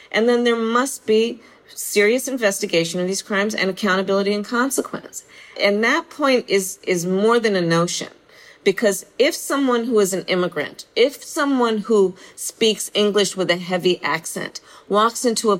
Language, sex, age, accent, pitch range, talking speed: English, female, 40-59, American, 185-235 Hz, 160 wpm